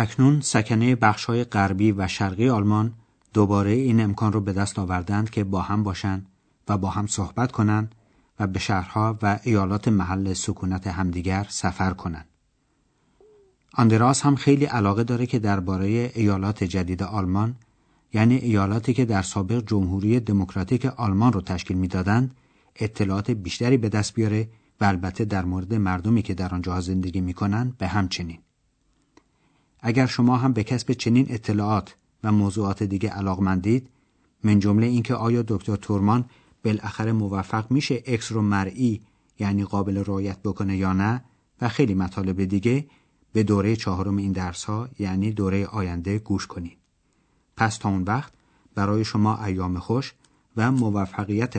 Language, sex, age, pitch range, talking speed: Persian, male, 40-59, 95-115 Hz, 145 wpm